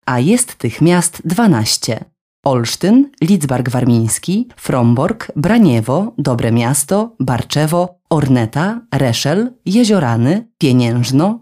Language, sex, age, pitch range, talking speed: Polish, female, 20-39, 135-195 Hz, 95 wpm